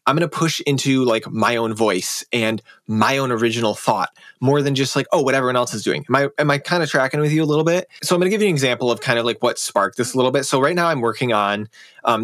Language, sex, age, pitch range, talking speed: English, male, 20-39, 110-140 Hz, 290 wpm